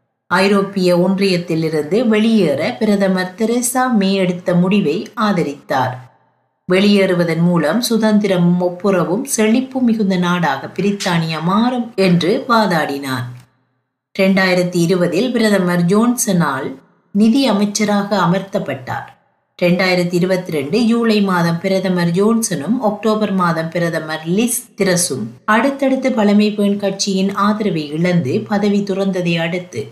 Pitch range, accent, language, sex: 165-210 Hz, native, Tamil, female